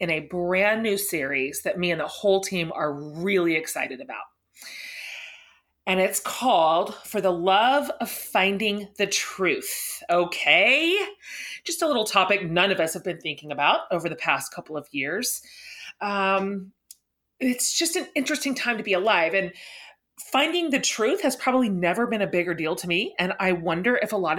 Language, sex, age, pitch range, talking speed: English, female, 30-49, 175-255 Hz, 175 wpm